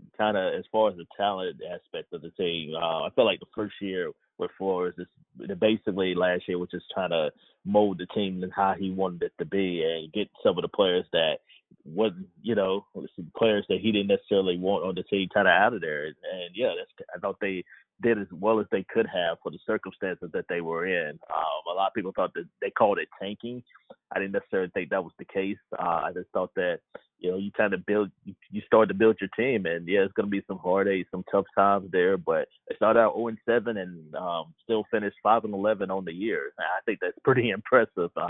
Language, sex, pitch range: English, male, 90-115 Hz